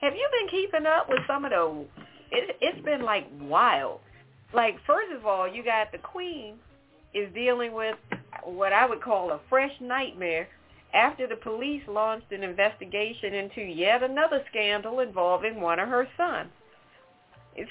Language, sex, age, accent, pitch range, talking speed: English, female, 40-59, American, 190-260 Hz, 160 wpm